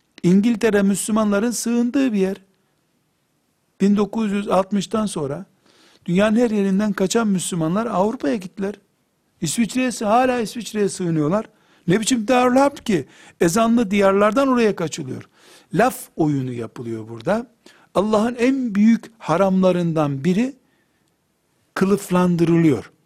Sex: male